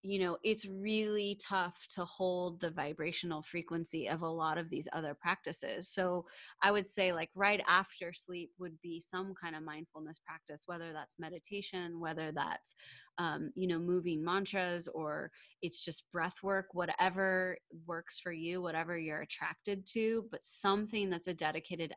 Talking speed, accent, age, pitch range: 165 wpm, American, 20-39, 165-190 Hz